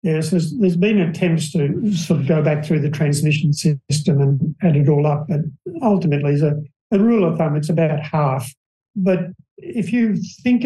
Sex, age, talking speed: male, 60-79, 190 wpm